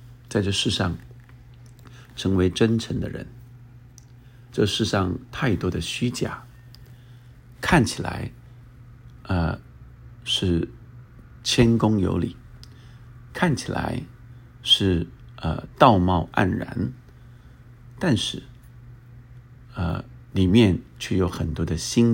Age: 50-69